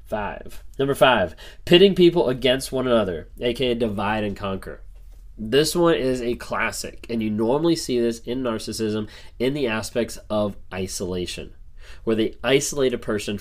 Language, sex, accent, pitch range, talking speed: English, male, American, 100-125 Hz, 150 wpm